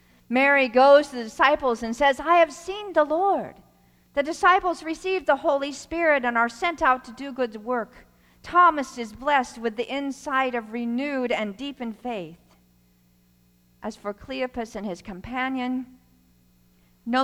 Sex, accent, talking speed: female, American, 155 wpm